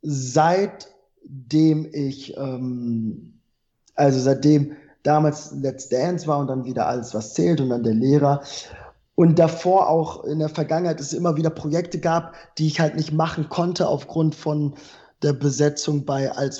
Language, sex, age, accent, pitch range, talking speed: German, male, 20-39, German, 145-170 Hz, 150 wpm